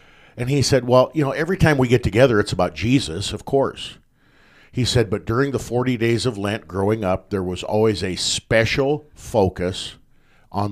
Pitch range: 95-125 Hz